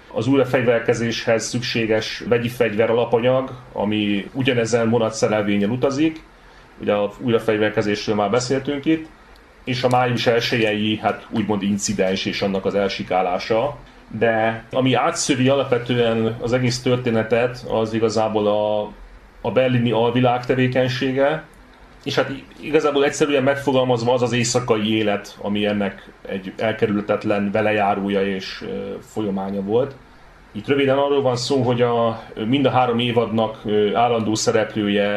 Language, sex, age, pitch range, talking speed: Hungarian, male, 30-49, 105-125 Hz, 120 wpm